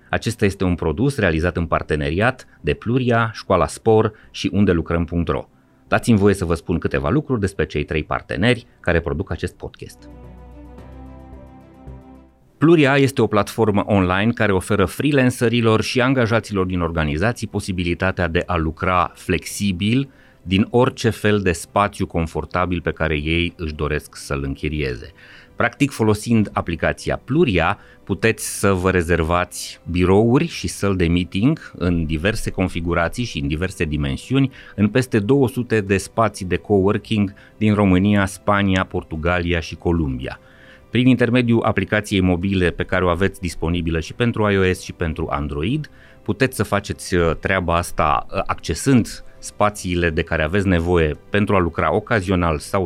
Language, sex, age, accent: Romanian, male, 30-49, native